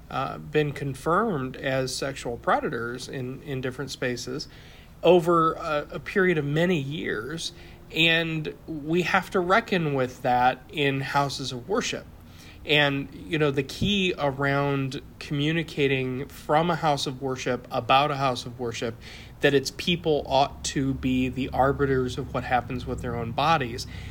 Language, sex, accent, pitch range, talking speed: English, male, American, 130-160 Hz, 150 wpm